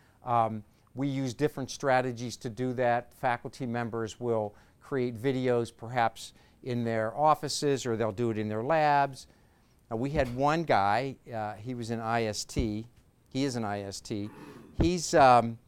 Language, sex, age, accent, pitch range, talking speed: English, male, 50-69, American, 115-140 Hz, 155 wpm